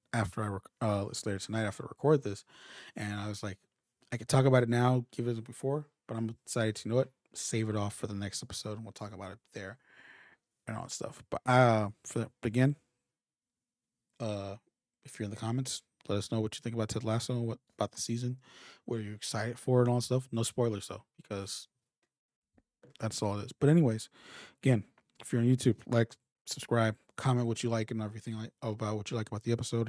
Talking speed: 225 wpm